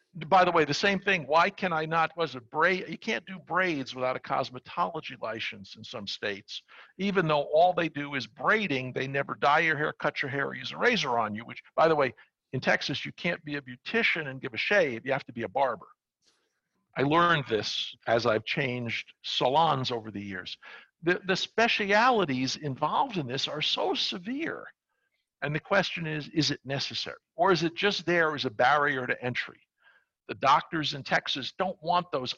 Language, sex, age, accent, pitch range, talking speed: English, male, 60-79, American, 135-185 Hz, 200 wpm